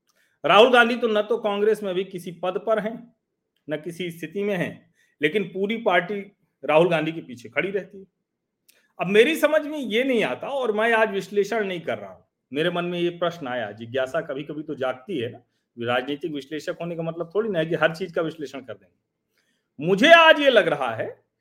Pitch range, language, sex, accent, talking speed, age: 165-225 Hz, Hindi, male, native, 215 wpm, 40-59